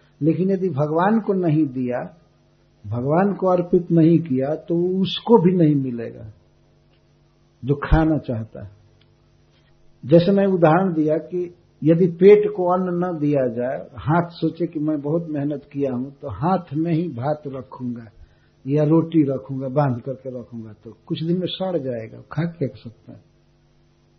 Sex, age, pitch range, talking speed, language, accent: male, 60-79, 130-175 Hz, 150 wpm, Hindi, native